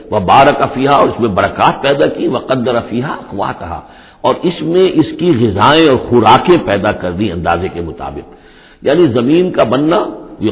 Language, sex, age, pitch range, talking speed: Urdu, male, 60-79, 100-125 Hz, 190 wpm